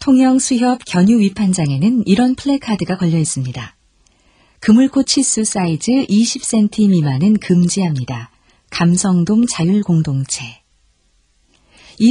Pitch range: 135-205 Hz